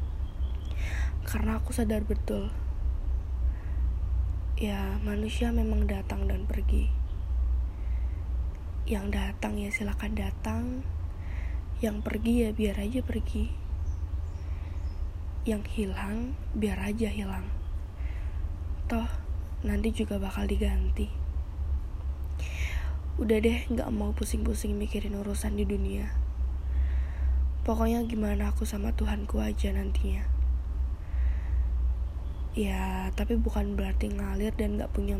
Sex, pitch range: female, 65-80 Hz